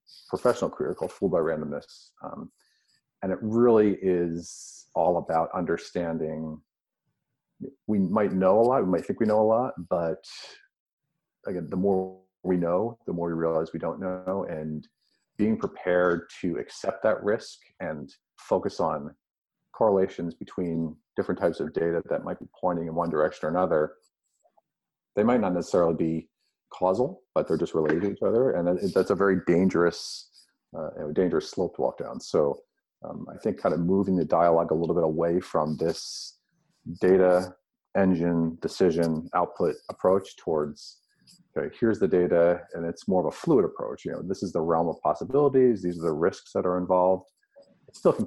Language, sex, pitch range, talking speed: English, male, 85-95 Hz, 170 wpm